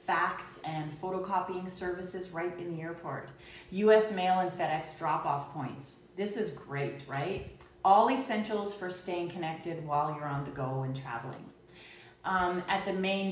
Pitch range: 170-215 Hz